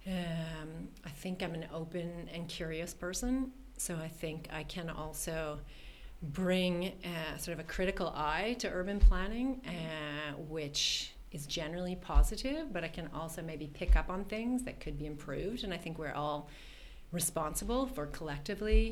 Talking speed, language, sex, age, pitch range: 160 wpm, English, female, 30-49, 150-180 Hz